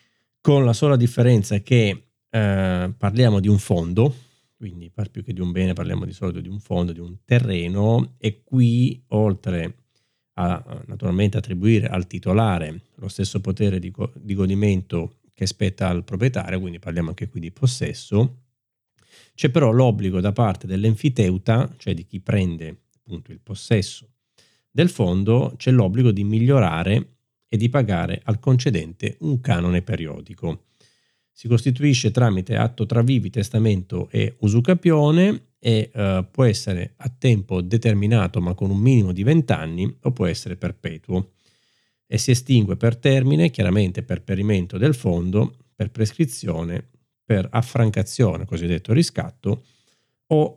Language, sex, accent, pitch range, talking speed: Italian, male, native, 95-125 Hz, 140 wpm